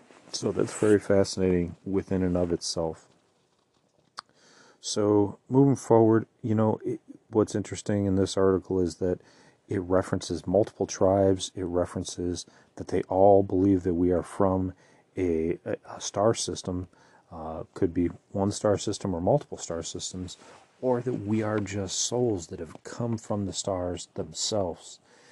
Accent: American